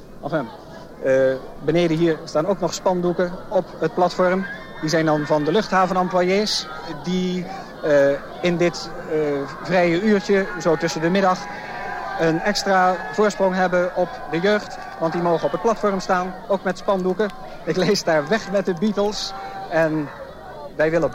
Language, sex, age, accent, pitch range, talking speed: Dutch, male, 50-69, Dutch, 170-215 Hz, 155 wpm